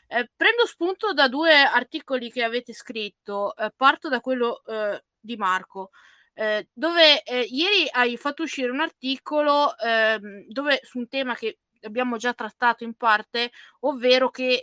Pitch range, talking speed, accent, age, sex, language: 230-285 Hz, 155 wpm, native, 20-39, female, Italian